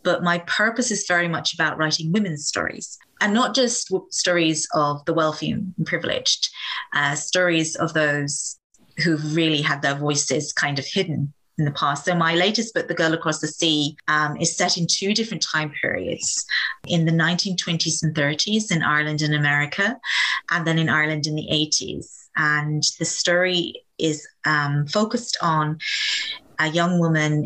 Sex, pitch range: female, 150-175 Hz